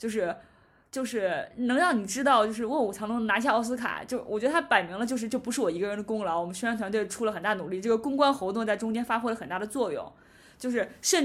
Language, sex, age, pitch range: Chinese, female, 20-39, 205-260 Hz